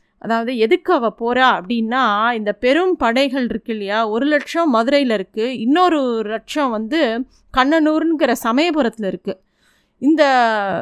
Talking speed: 115 wpm